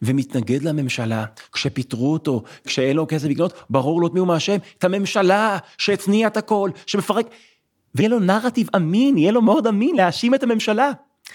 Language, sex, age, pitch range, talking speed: Hebrew, male, 30-49, 180-250 Hz, 165 wpm